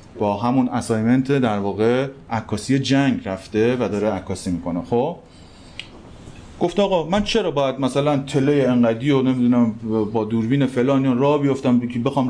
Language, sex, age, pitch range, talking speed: Persian, male, 30-49, 110-145 Hz, 140 wpm